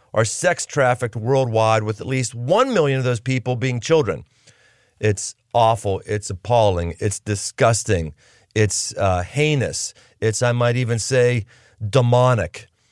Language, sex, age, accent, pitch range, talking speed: English, male, 40-59, American, 110-135 Hz, 130 wpm